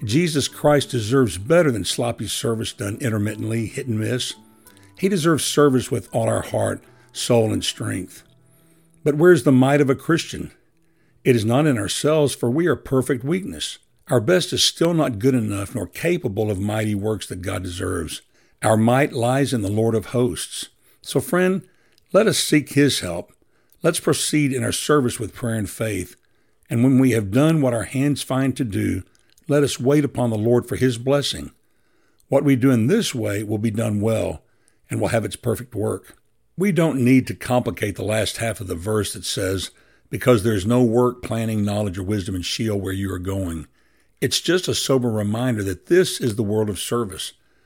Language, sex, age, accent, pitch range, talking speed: English, male, 60-79, American, 110-140 Hz, 195 wpm